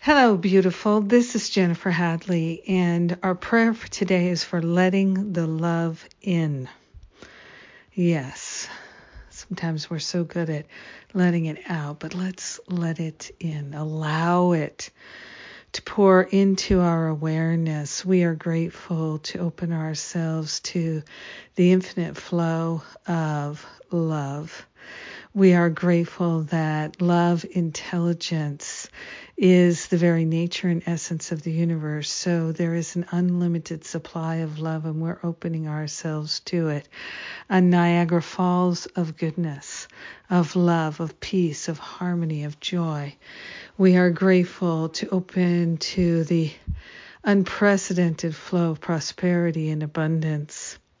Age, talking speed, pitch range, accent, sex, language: 50-69, 125 wpm, 160-180 Hz, American, female, English